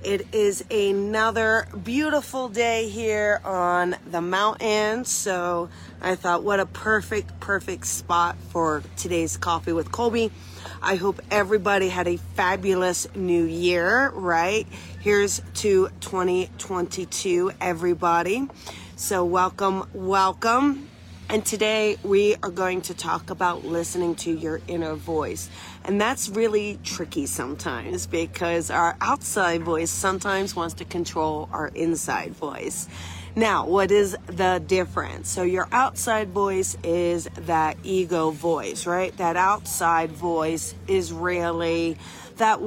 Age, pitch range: 30-49, 165-205 Hz